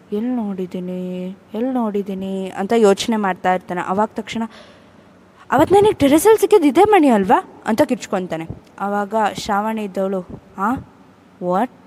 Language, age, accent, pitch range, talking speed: Kannada, 20-39, native, 185-235 Hz, 110 wpm